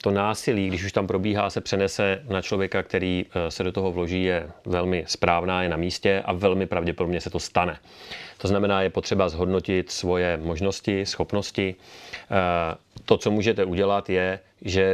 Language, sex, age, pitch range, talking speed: Slovak, male, 30-49, 90-105 Hz, 165 wpm